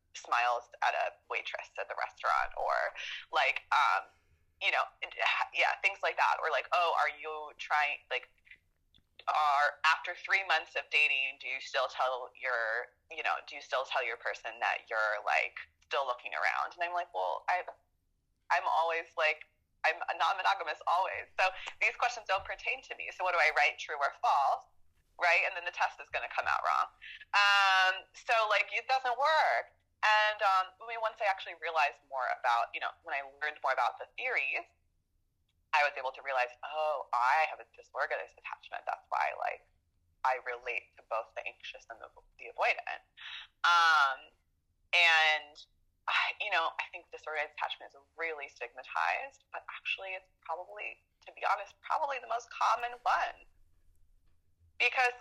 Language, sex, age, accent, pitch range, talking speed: English, female, 20-39, American, 125-205 Hz, 170 wpm